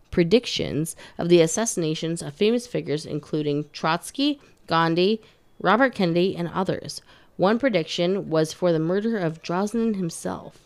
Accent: American